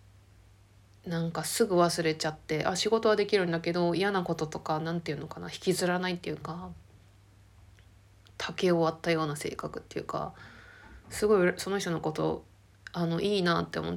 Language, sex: Japanese, female